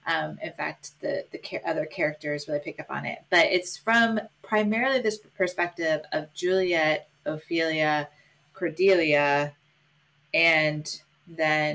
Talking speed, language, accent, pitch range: 125 wpm, English, American, 150-210 Hz